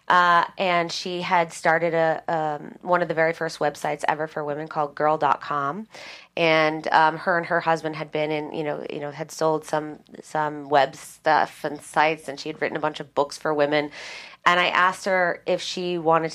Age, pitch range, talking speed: 30-49, 140-170 Hz, 205 wpm